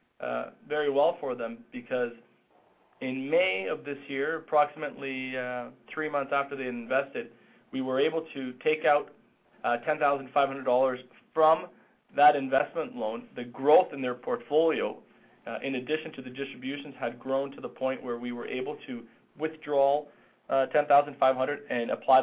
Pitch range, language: 130-160 Hz, English